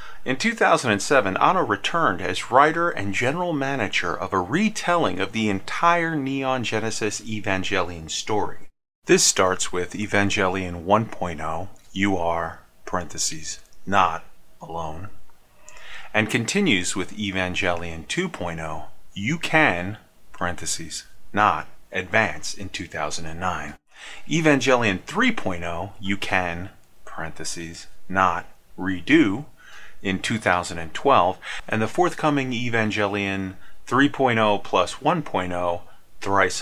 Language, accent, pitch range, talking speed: English, American, 90-130 Hz, 95 wpm